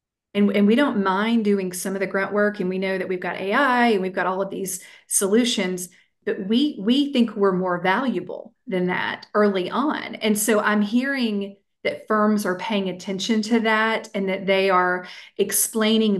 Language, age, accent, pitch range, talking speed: English, 40-59, American, 185-220 Hz, 195 wpm